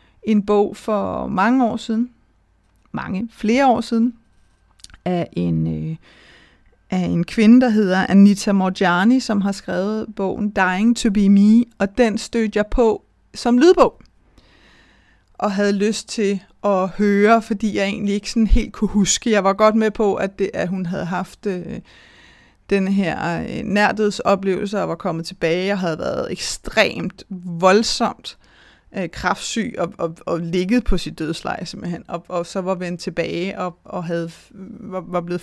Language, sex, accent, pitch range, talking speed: Danish, female, native, 185-220 Hz, 160 wpm